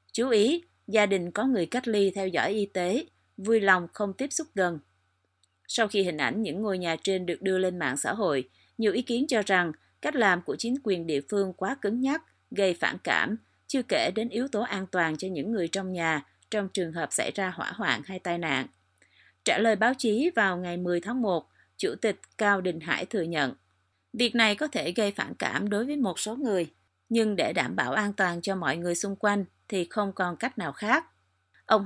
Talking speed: 220 wpm